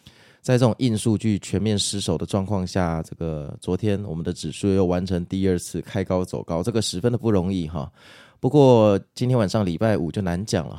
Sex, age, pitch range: male, 20-39, 85-105 Hz